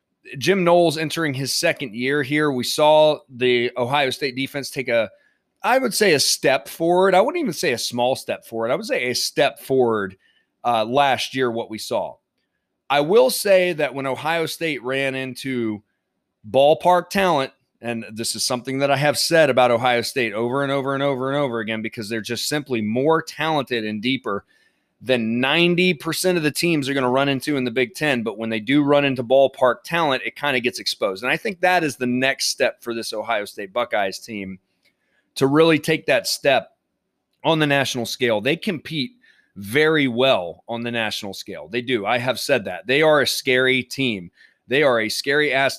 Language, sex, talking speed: English, male, 200 wpm